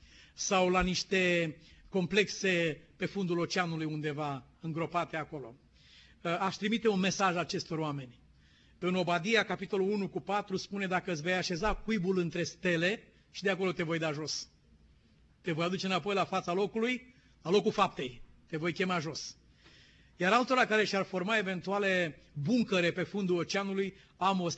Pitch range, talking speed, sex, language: 170-200 Hz, 150 wpm, male, Romanian